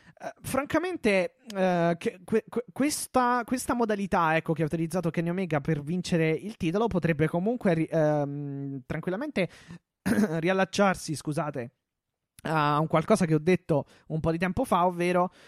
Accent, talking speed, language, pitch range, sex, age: native, 145 wpm, Italian, 145-180 Hz, male, 20-39